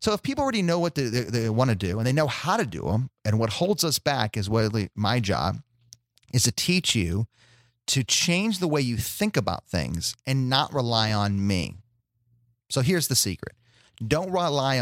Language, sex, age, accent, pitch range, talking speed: English, male, 30-49, American, 105-135 Hz, 205 wpm